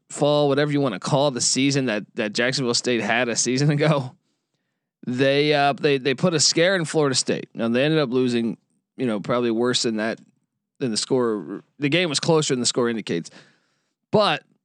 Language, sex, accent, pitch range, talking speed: English, male, American, 140-175 Hz, 200 wpm